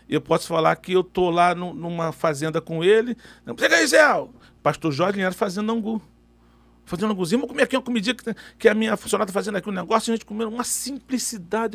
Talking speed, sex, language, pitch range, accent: 230 wpm, male, Portuguese, 180-235 Hz, Brazilian